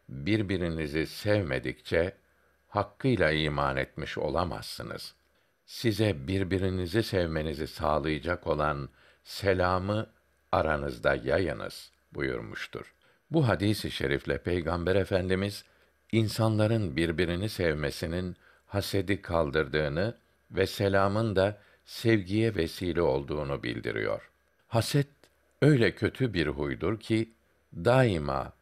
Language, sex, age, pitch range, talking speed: Turkish, male, 60-79, 80-110 Hz, 80 wpm